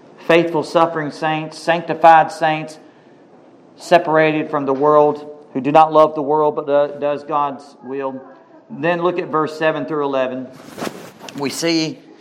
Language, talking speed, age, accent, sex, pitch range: English, 140 wpm, 40-59, American, male, 140-170 Hz